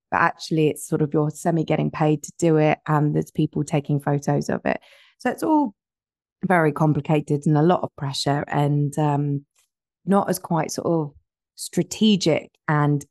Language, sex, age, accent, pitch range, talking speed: English, female, 20-39, British, 145-175 Hz, 175 wpm